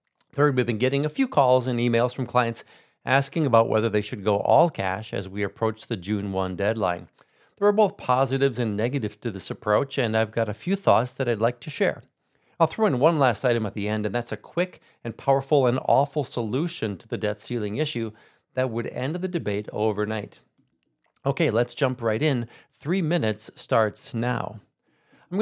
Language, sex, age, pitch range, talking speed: English, male, 40-59, 110-140 Hz, 200 wpm